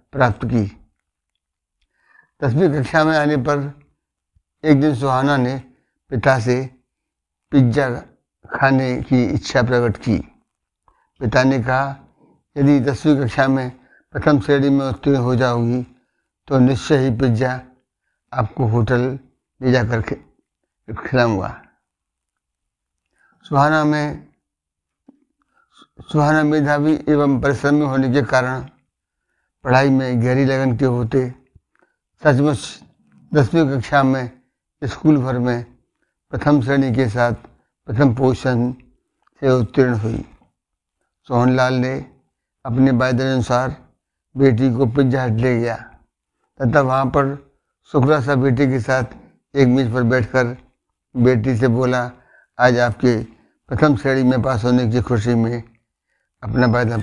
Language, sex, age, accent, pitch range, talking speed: Hindi, male, 60-79, native, 120-140 Hz, 120 wpm